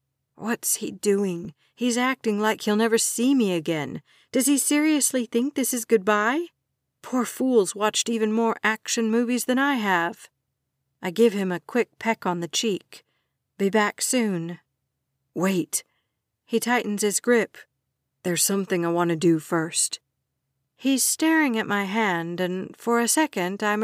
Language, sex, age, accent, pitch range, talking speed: English, female, 50-69, American, 170-230 Hz, 155 wpm